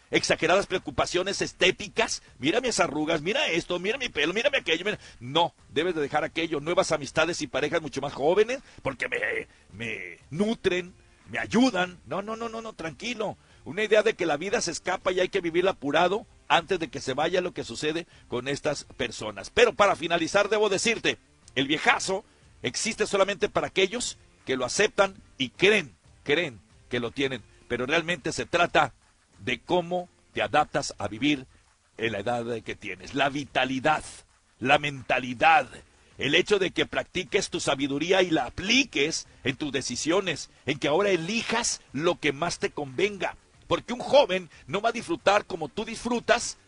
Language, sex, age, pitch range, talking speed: Spanish, male, 50-69, 140-215 Hz, 170 wpm